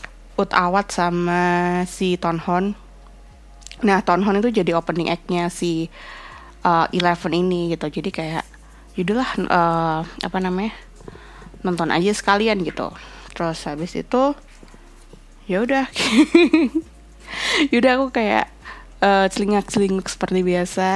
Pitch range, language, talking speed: 165-200 Hz, Indonesian, 110 wpm